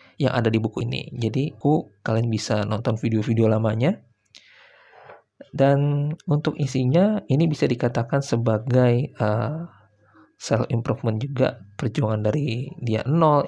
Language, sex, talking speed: Indonesian, male, 120 wpm